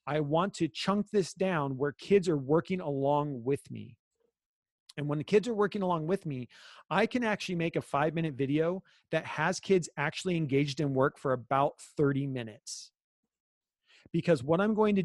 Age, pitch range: 30-49, 150-200 Hz